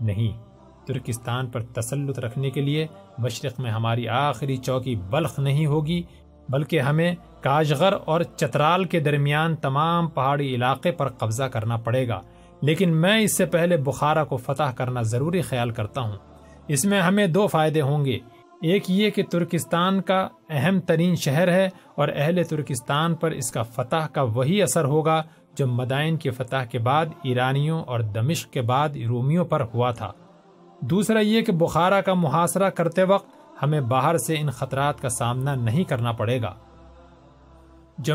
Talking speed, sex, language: 165 wpm, male, Urdu